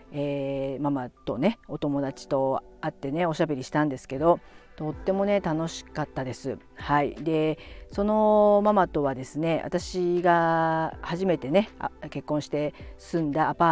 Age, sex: 50-69, female